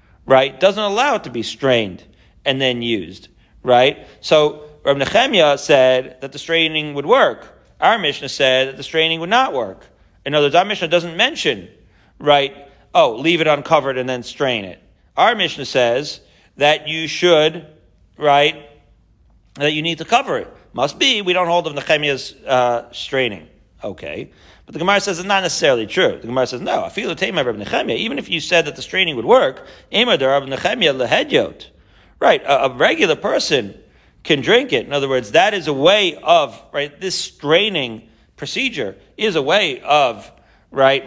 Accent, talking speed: American, 170 wpm